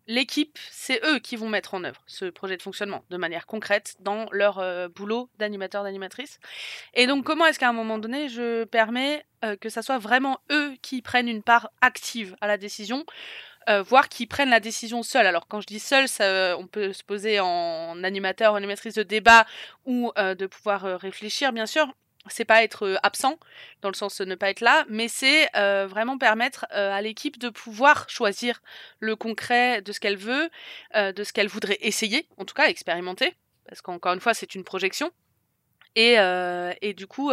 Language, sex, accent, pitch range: French, female, French, 195-240 Hz